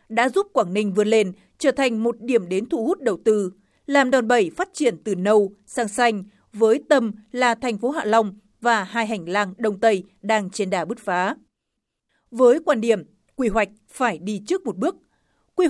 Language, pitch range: Vietnamese, 200-245 Hz